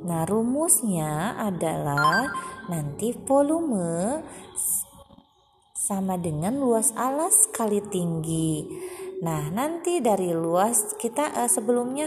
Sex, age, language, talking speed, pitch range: female, 20-39, Indonesian, 85 wpm, 195-285 Hz